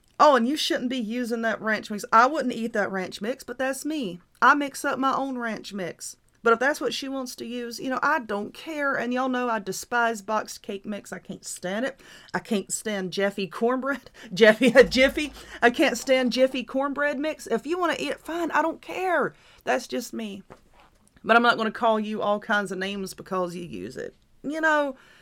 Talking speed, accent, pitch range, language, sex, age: 225 wpm, American, 195-265 Hz, English, female, 40-59